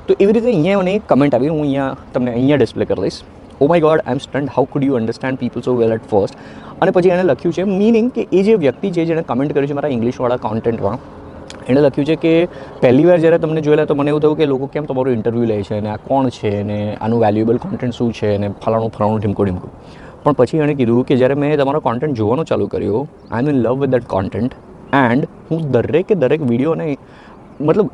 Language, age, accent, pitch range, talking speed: Gujarati, 20-39, native, 120-160 Hz, 230 wpm